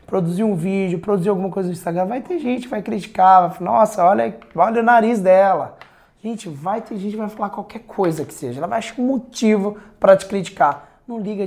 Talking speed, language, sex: 225 wpm, Portuguese, male